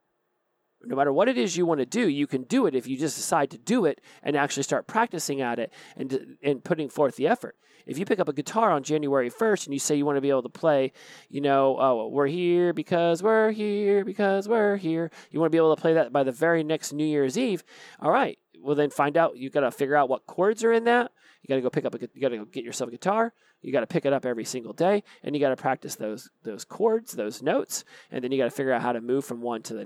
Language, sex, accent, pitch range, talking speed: English, male, American, 135-175 Hz, 285 wpm